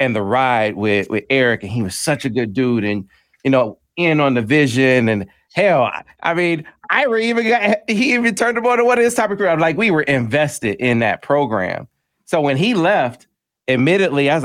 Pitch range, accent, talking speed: 115-150 Hz, American, 215 wpm